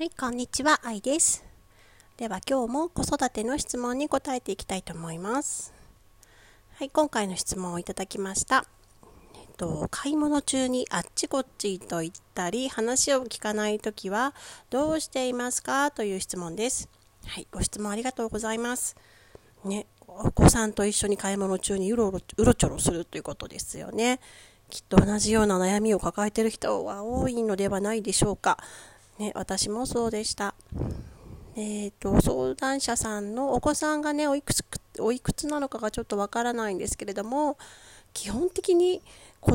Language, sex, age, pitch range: Japanese, female, 40-59, 200-270 Hz